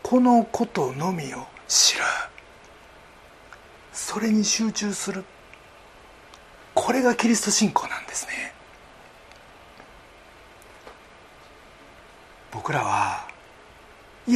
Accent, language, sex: native, Japanese, male